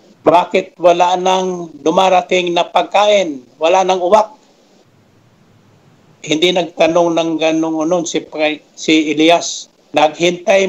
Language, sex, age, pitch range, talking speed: Filipino, male, 60-79, 150-175 Hz, 95 wpm